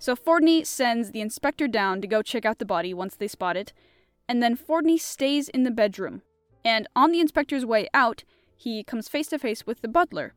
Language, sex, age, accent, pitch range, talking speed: English, female, 10-29, American, 205-270 Hz, 215 wpm